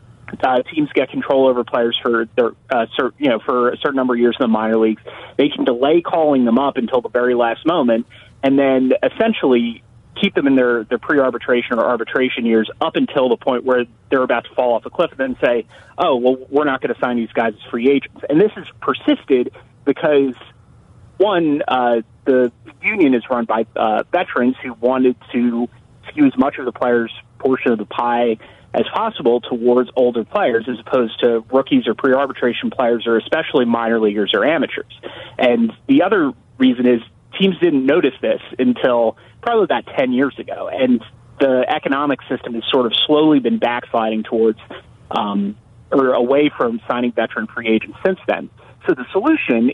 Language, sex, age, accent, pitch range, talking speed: English, male, 30-49, American, 115-135 Hz, 190 wpm